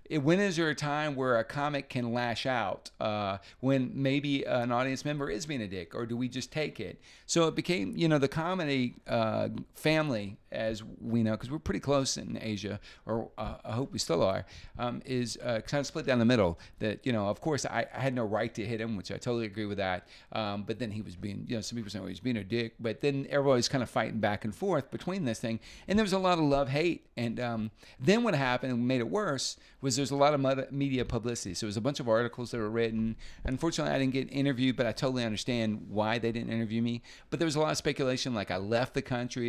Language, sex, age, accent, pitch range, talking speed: English, male, 40-59, American, 110-135 Hz, 255 wpm